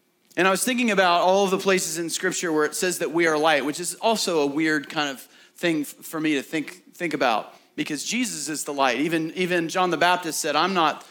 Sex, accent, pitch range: male, American, 150-185 Hz